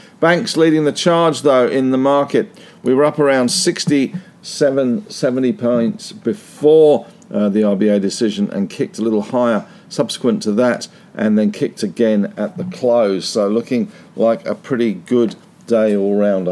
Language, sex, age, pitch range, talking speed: English, male, 50-69, 120-170 Hz, 155 wpm